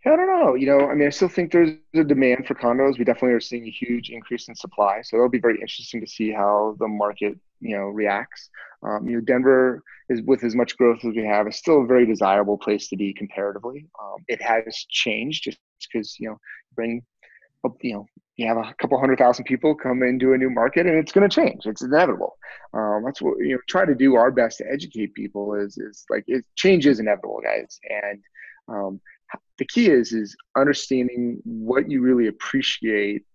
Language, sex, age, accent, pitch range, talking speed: English, male, 30-49, American, 110-140 Hz, 215 wpm